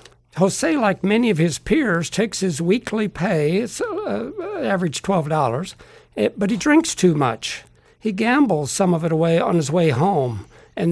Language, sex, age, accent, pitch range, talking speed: English, male, 60-79, American, 150-200 Hz, 170 wpm